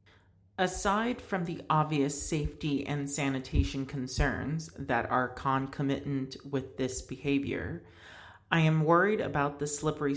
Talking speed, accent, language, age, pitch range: 120 wpm, American, English, 40-59, 115-150 Hz